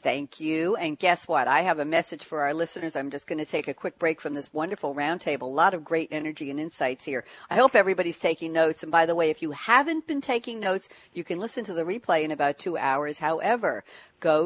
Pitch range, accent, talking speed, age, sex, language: 160-225 Hz, American, 245 wpm, 60-79, female, English